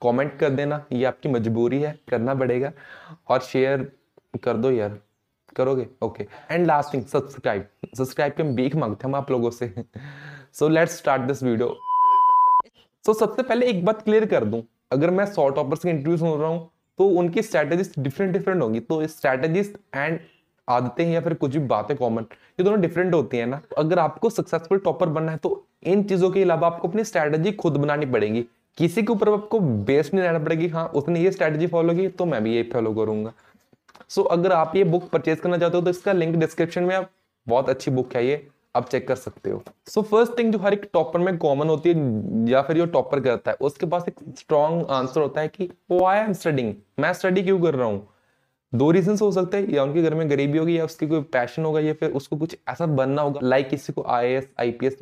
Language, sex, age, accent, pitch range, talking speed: Hindi, male, 20-39, native, 130-180 Hz, 220 wpm